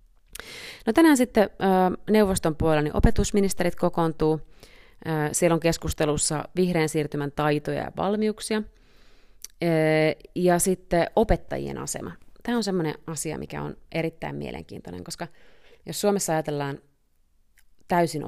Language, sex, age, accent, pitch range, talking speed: Finnish, female, 30-49, native, 145-175 Hz, 110 wpm